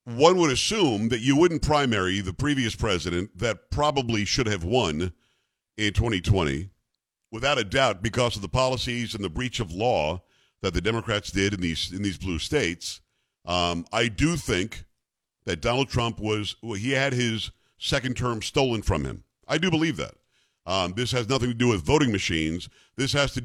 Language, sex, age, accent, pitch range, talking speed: English, male, 50-69, American, 105-130 Hz, 185 wpm